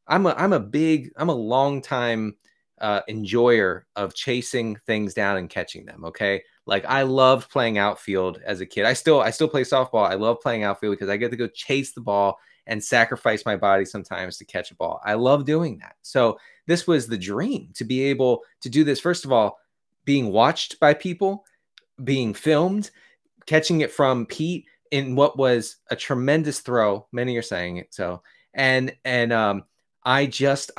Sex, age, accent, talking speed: male, 20-39, American, 190 wpm